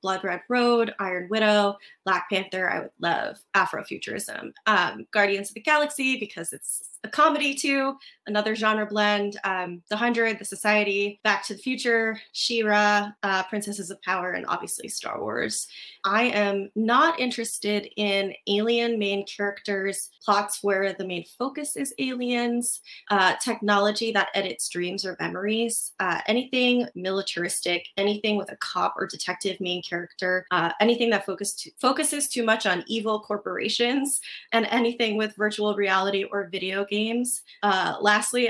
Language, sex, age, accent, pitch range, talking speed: English, female, 20-39, American, 195-240 Hz, 145 wpm